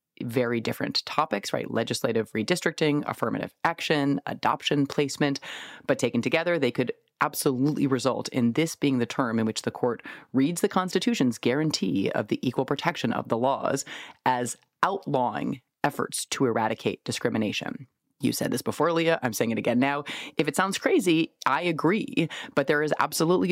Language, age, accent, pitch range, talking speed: English, 30-49, American, 115-155 Hz, 160 wpm